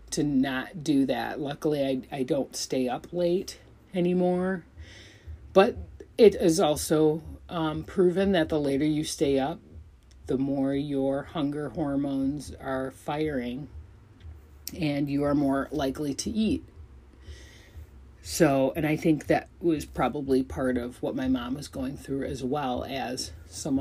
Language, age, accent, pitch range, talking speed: English, 40-59, American, 110-160 Hz, 145 wpm